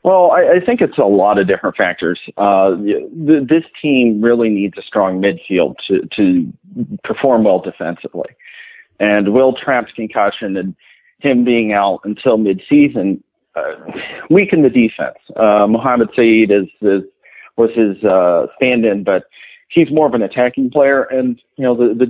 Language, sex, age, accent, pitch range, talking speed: English, male, 40-59, American, 105-150 Hz, 165 wpm